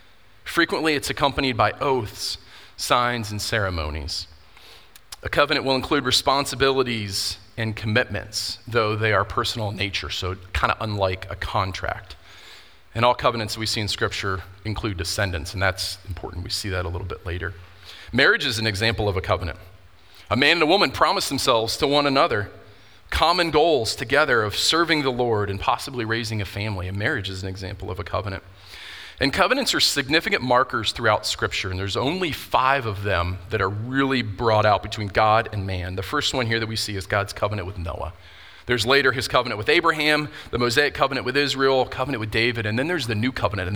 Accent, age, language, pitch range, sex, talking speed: American, 40-59, English, 95-125 Hz, male, 190 wpm